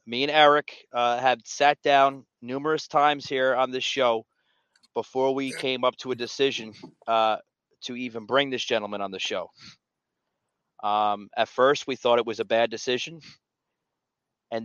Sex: male